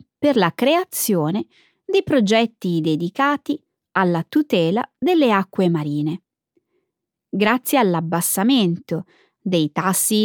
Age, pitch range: 20-39, 175-280 Hz